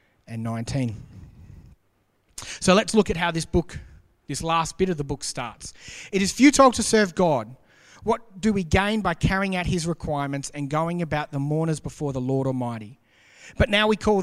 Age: 30-49